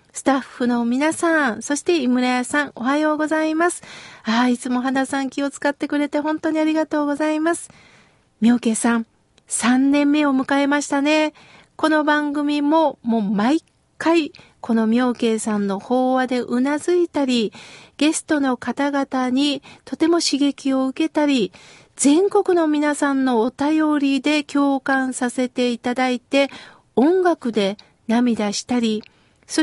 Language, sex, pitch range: Japanese, female, 255-320 Hz